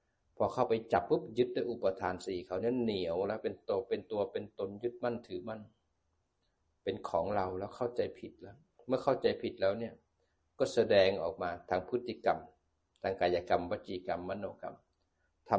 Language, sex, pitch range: Thai, male, 85-115 Hz